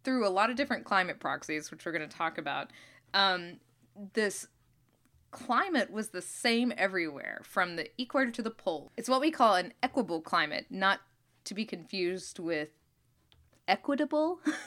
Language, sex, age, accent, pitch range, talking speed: English, female, 20-39, American, 175-265 Hz, 155 wpm